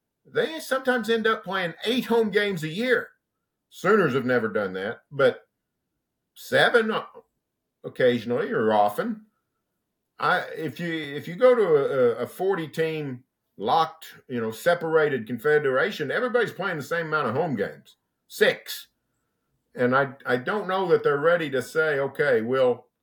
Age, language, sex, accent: 50-69, English, male, American